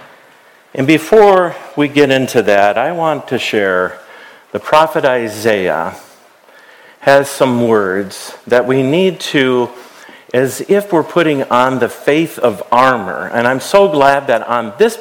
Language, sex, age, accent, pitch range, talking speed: English, male, 50-69, American, 110-155 Hz, 145 wpm